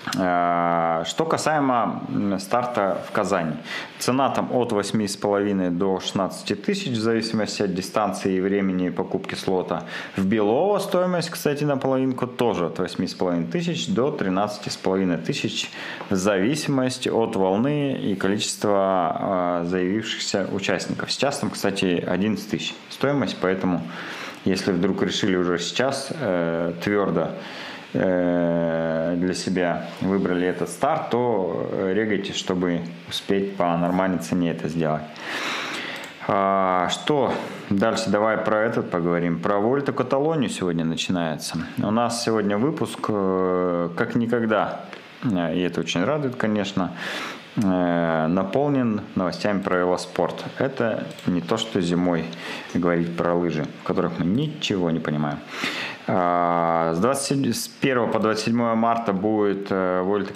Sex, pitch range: male, 85-110 Hz